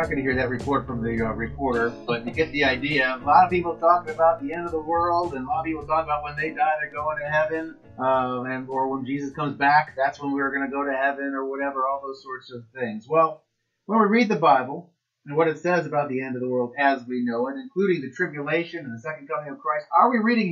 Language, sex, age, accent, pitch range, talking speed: English, male, 30-49, American, 140-195 Hz, 270 wpm